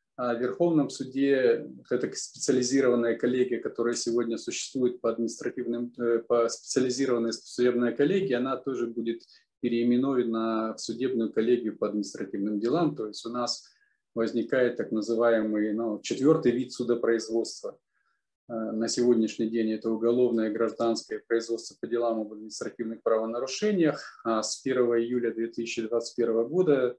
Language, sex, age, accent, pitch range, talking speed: Ukrainian, male, 20-39, native, 115-130 Hz, 115 wpm